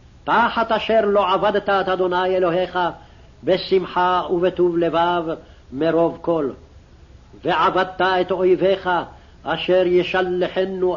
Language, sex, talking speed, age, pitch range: English, male, 95 wpm, 60-79, 180-200 Hz